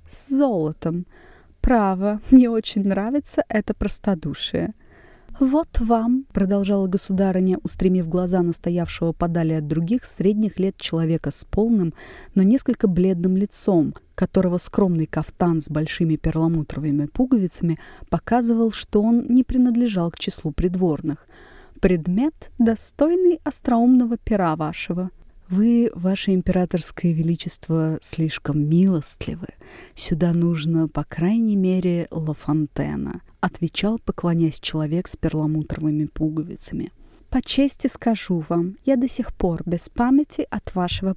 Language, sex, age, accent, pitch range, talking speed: Russian, female, 20-39, native, 170-230 Hz, 115 wpm